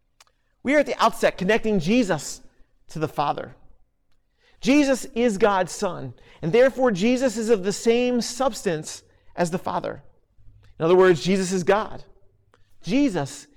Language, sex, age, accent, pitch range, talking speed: English, male, 40-59, American, 170-250 Hz, 140 wpm